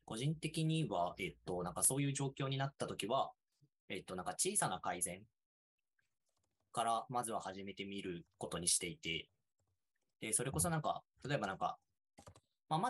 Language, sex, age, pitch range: Japanese, male, 20-39, 95-150 Hz